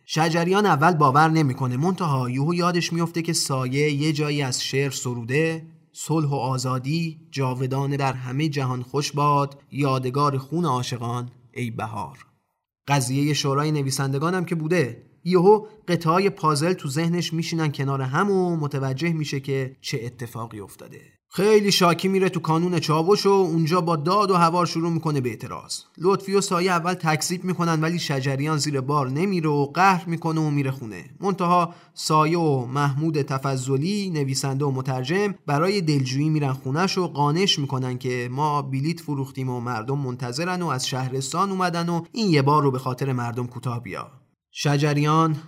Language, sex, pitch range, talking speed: Persian, male, 135-170 Hz, 155 wpm